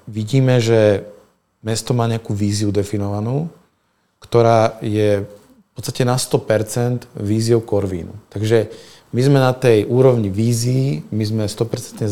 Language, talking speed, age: Slovak, 125 wpm, 40-59